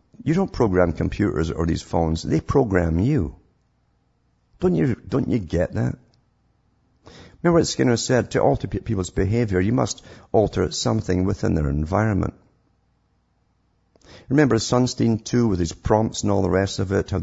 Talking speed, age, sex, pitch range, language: 155 wpm, 50-69, male, 85-110 Hz, English